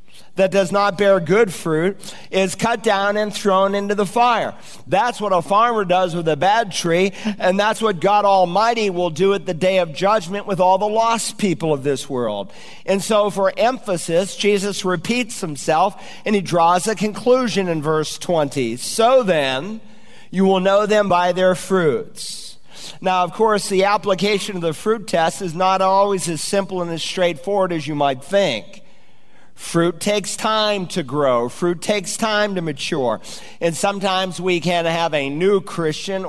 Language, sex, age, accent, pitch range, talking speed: English, male, 50-69, American, 175-205 Hz, 175 wpm